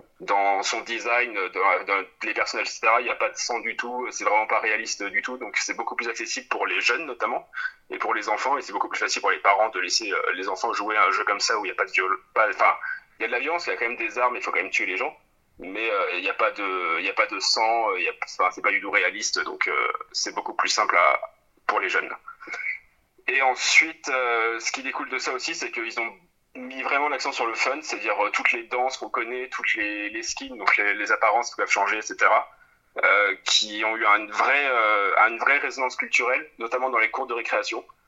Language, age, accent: French, 30-49, French